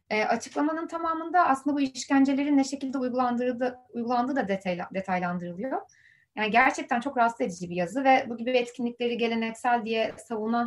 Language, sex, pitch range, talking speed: Turkish, female, 215-275 Hz, 145 wpm